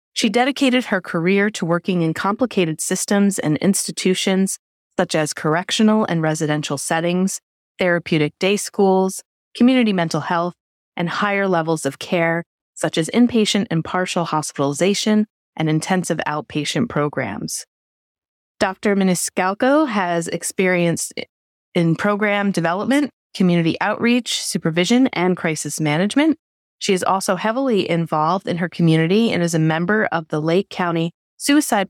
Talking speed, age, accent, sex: 130 wpm, 30-49, American, female